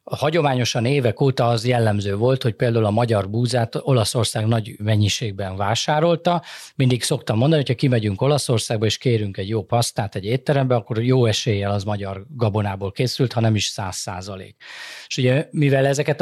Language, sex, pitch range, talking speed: Hungarian, male, 110-135 Hz, 165 wpm